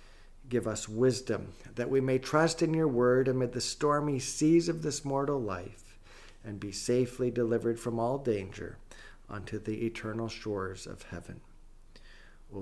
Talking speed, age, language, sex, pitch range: 150 wpm, 50-69, English, male, 115-145 Hz